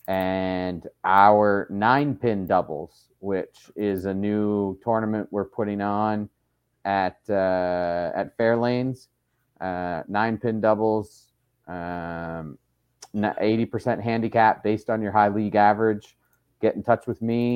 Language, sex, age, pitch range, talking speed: English, male, 30-49, 95-115 Hz, 120 wpm